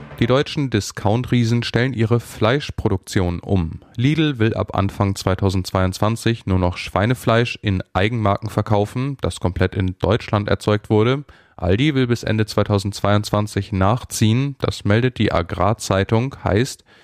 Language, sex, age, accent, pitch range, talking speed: German, male, 10-29, German, 100-120 Hz, 125 wpm